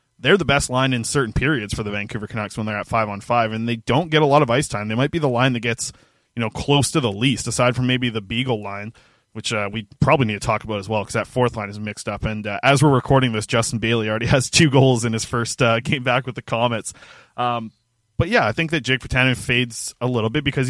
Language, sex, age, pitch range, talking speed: English, male, 20-39, 115-135 Hz, 280 wpm